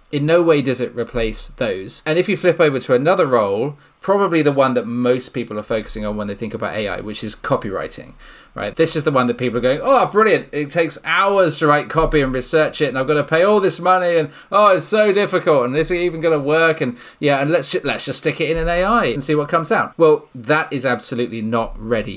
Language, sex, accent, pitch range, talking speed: English, male, British, 115-155 Hz, 260 wpm